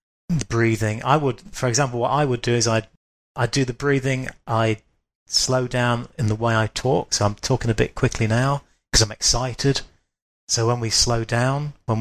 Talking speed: 195 wpm